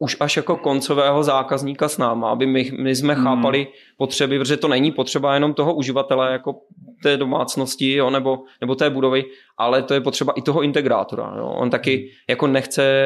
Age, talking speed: 20-39, 185 wpm